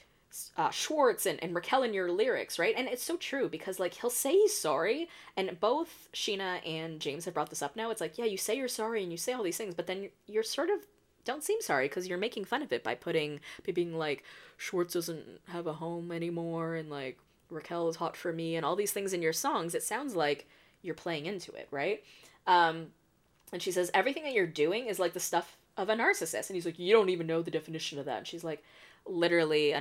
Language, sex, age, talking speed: English, female, 20-39, 240 wpm